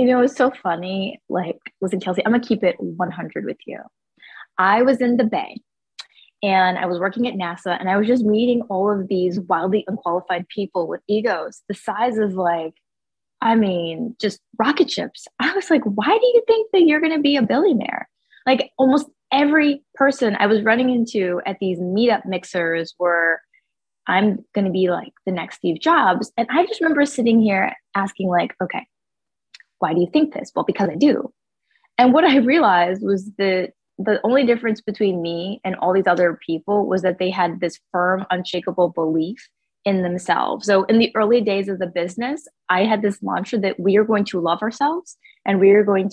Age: 20-39